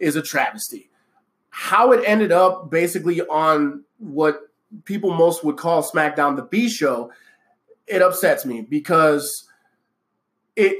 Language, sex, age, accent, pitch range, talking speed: English, male, 20-39, American, 150-190 Hz, 120 wpm